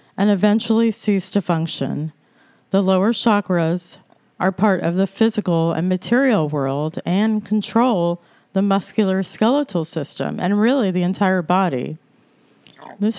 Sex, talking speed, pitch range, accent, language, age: female, 125 wpm, 180-225 Hz, American, English, 40-59